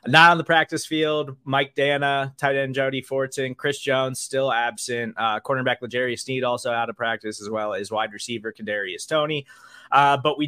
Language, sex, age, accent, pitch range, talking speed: English, male, 20-39, American, 120-150 Hz, 190 wpm